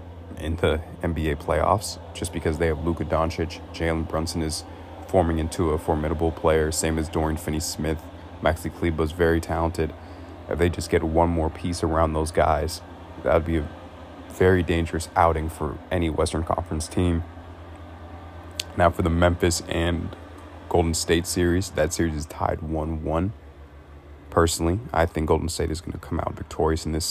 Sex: male